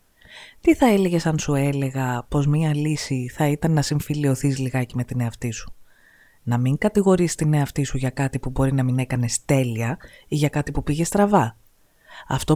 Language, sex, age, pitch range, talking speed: Greek, female, 30-49, 125-180 Hz, 185 wpm